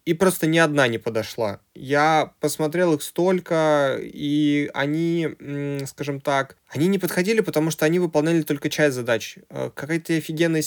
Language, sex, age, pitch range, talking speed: Russian, male, 20-39, 125-160 Hz, 145 wpm